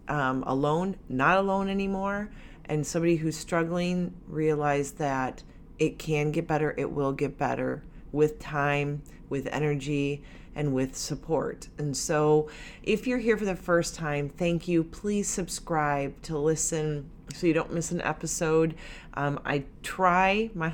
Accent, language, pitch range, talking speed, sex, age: American, English, 145-175 Hz, 150 wpm, female, 30-49